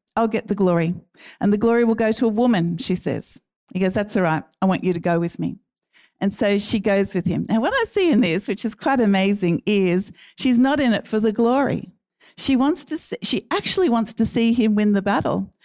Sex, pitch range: female, 190-240 Hz